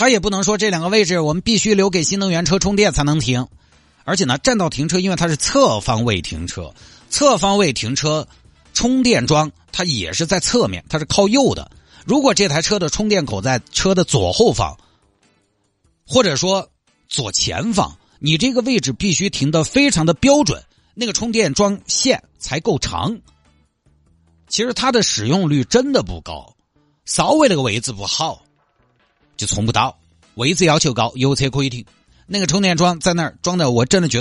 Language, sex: Chinese, male